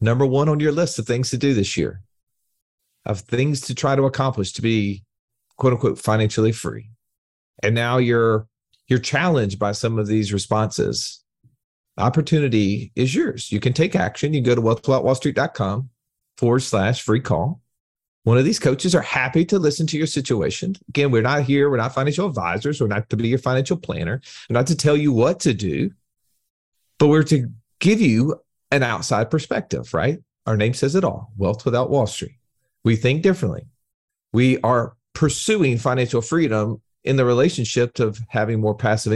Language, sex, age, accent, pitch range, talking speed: English, male, 40-59, American, 110-145 Hz, 180 wpm